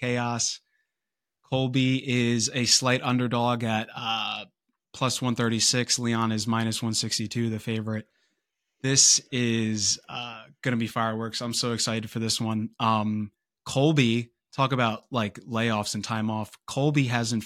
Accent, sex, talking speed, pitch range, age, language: American, male, 140 wpm, 115-125 Hz, 20-39, English